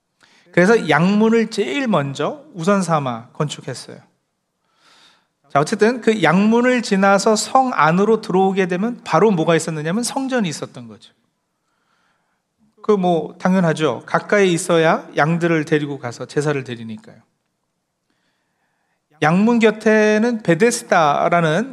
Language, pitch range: Korean, 155-205 Hz